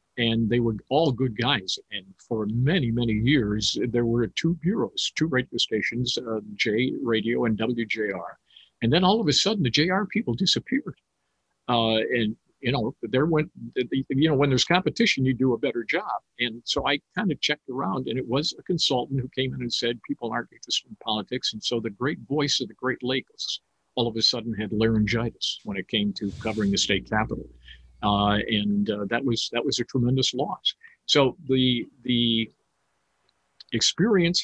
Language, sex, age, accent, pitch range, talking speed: English, male, 50-69, American, 110-135 Hz, 190 wpm